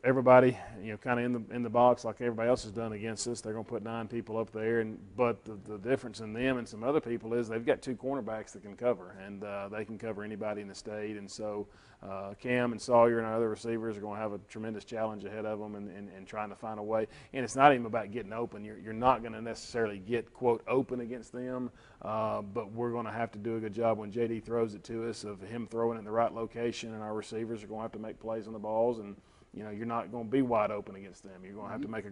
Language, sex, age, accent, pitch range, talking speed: English, male, 40-59, American, 105-120 Hz, 295 wpm